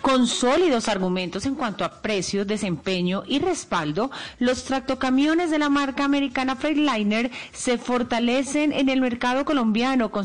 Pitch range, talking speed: 190-260 Hz, 140 wpm